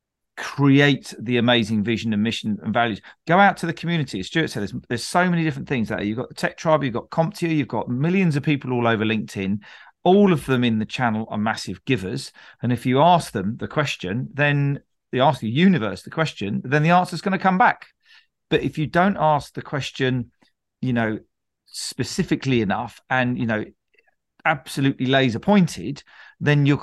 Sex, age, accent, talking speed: male, 40-59, British, 200 wpm